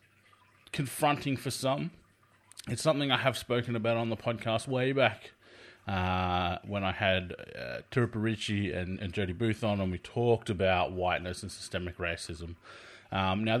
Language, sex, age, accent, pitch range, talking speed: English, male, 20-39, Australian, 90-115 Hz, 155 wpm